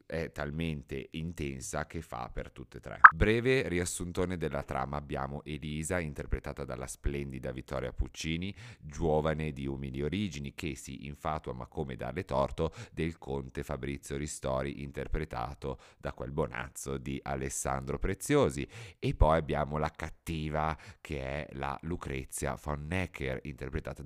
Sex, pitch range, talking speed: male, 70-85 Hz, 135 wpm